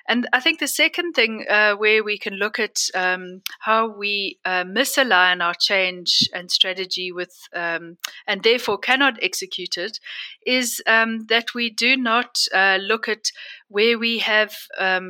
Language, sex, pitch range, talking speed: English, female, 195-245 Hz, 165 wpm